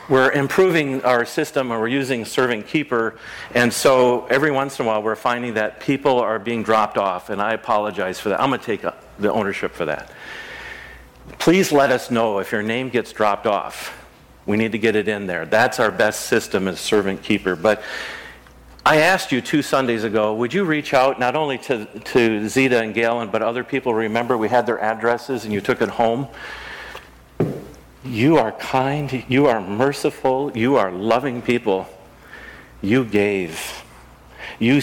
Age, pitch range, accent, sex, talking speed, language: 50-69, 110-135 Hz, American, male, 180 wpm, English